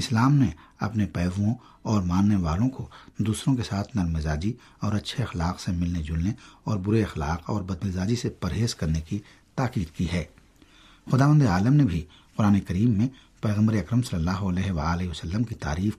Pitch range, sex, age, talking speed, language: 90-120 Hz, male, 60-79, 175 wpm, Urdu